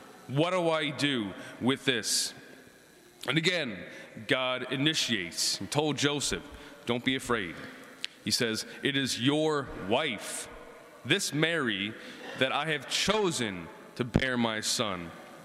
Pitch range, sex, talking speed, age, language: 125-170 Hz, male, 125 wpm, 30-49, English